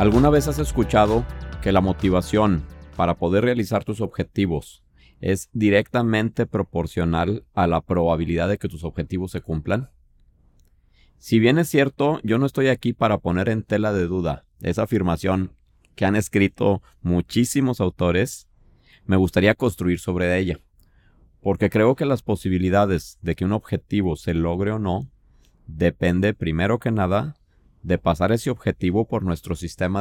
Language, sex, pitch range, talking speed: Spanish, male, 85-110 Hz, 150 wpm